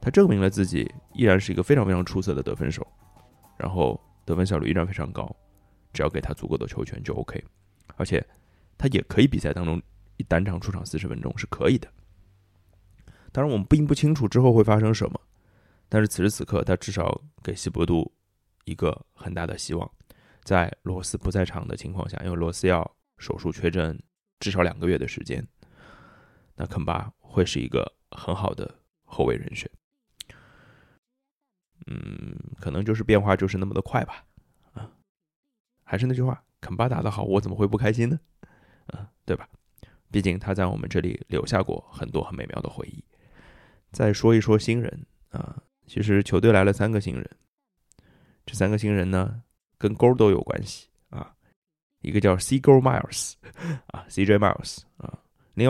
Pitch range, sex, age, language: 90-120 Hz, male, 20-39, Chinese